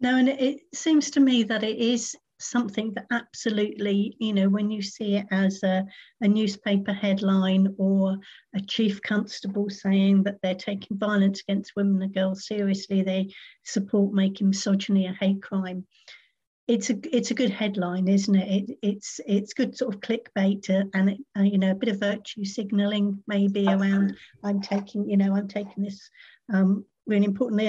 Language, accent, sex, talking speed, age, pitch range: English, British, female, 175 wpm, 50-69, 195-225 Hz